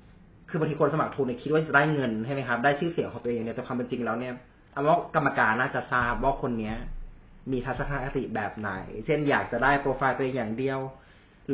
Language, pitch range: Thai, 110-140 Hz